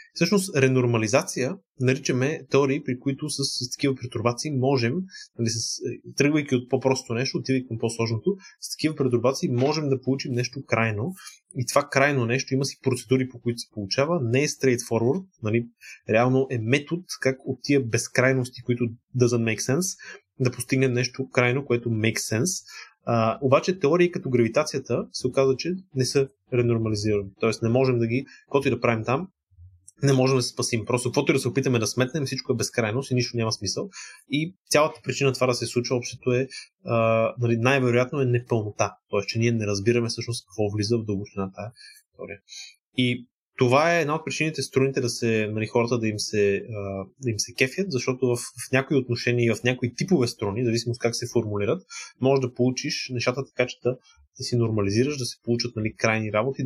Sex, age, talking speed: male, 20-39, 185 wpm